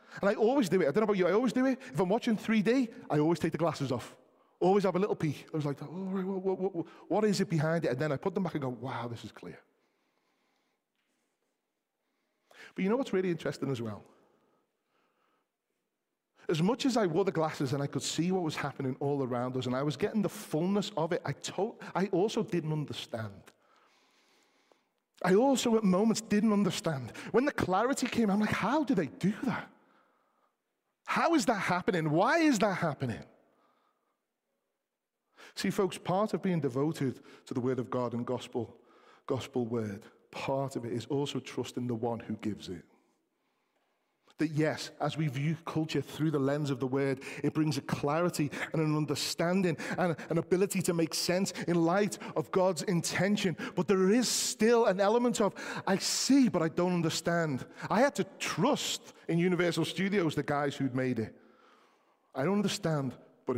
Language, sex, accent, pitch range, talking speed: English, male, British, 140-200 Hz, 185 wpm